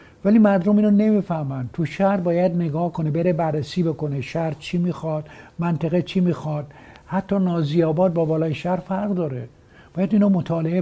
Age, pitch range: 60-79, 150-185 Hz